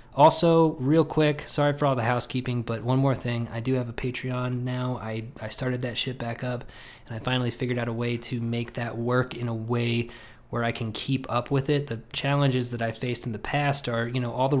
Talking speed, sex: 240 wpm, male